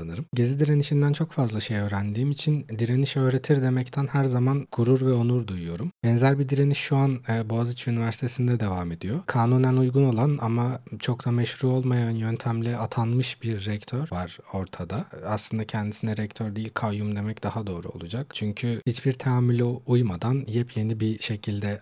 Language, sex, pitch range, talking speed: Turkish, male, 105-130 Hz, 155 wpm